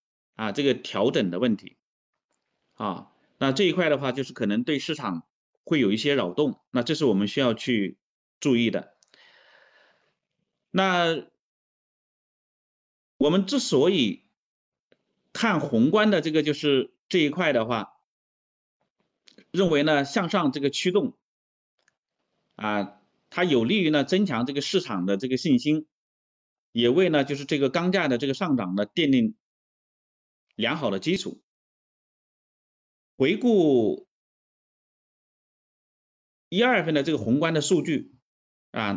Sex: male